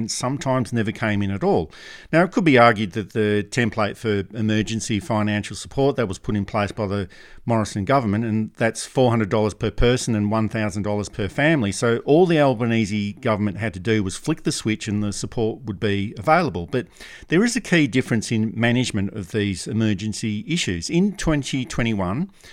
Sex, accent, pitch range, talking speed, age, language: male, Australian, 105-125 Hz, 180 wpm, 50-69, English